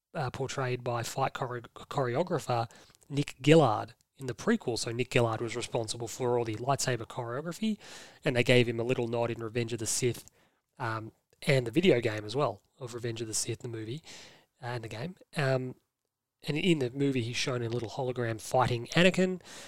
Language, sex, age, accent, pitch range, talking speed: English, male, 20-39, Australian, 115-145 Hz, 185 wpm